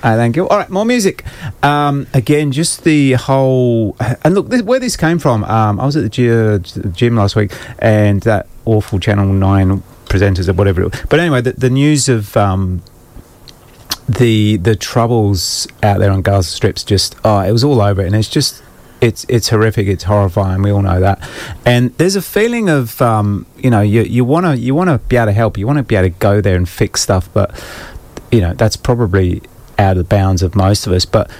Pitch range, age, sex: 100-125 Hz, 30-49, male